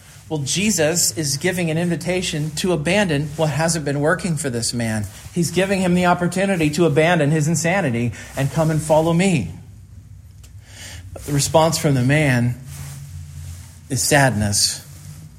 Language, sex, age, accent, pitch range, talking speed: English, male, 40-59, American, 110-170 Hz, 140 wpm